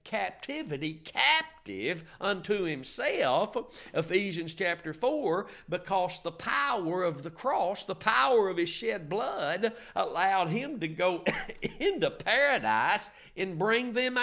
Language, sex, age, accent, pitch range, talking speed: English, male, 50-69, American, 165-230 Hz, 120 wpm